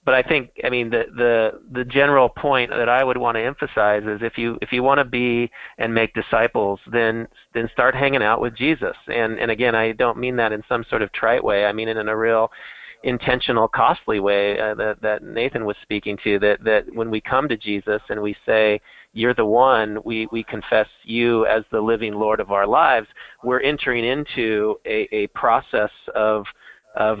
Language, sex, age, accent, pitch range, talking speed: English, male, 40-59, American, 110-125 Hz, 210 wpm